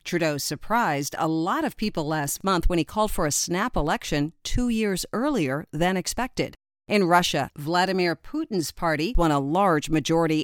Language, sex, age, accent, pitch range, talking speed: English, female, 50-69, American, 160-225 Hz, 165 wpm